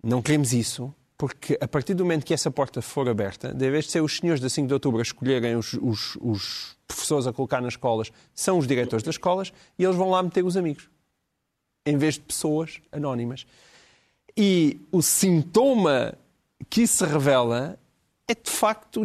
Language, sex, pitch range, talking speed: Portuguese, male, 145-200 Hz, 185 wpm